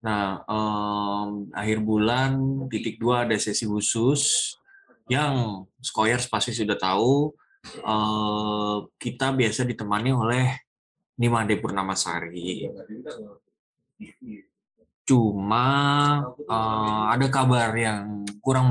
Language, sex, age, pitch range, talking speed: Indonesian, male, 10-29, 105-125 Hz, 90 wpm